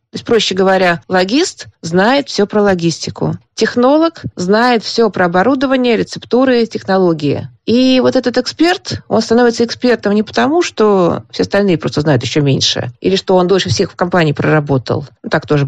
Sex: female